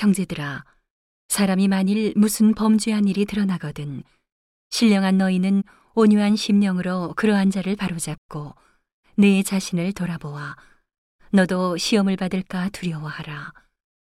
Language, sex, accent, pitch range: Korean, female, native, 175-205 Hz